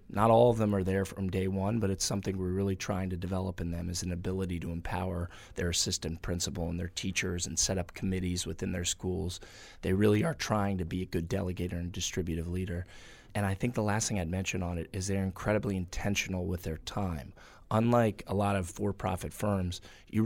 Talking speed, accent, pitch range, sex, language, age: 215 wpm, American, 90-100 Hz, male, English, 20-39